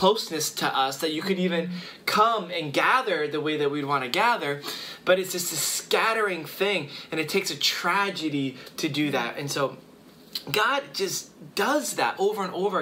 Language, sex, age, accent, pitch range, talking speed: English, male, 20-39, American, 140-185 Hz, 185 wpm